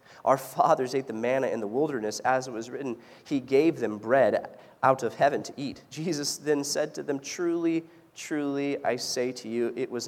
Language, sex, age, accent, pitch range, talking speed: English, male, 30-49, American, 130-190 Hz, 200 wpm